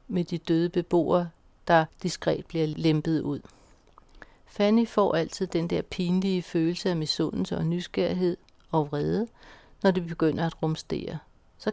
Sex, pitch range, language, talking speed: female, 165-195 Hz, Danish, 145 wpm